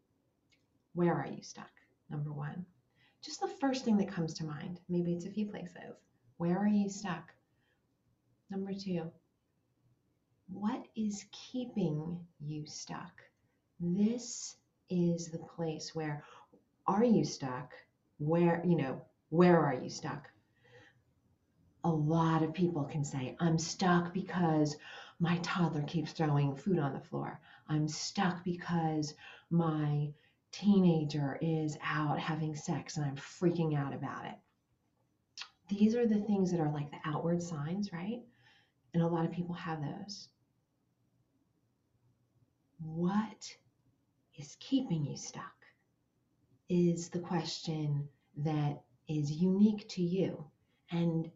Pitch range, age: 150-180 Hz, 40-59